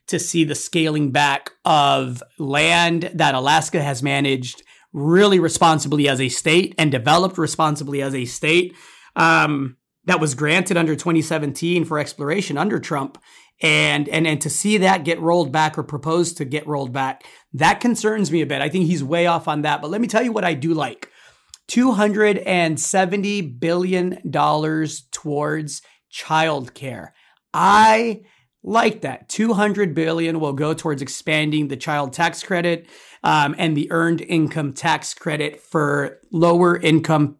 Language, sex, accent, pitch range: English, male, American, 150-180 Hz